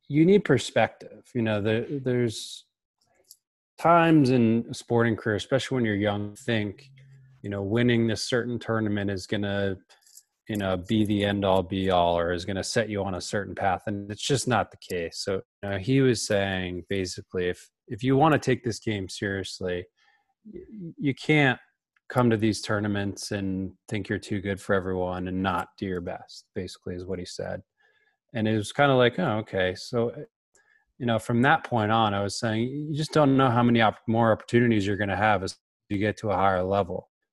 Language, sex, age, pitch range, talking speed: English, male, 20-39, 100-120 Hz, 205 wpm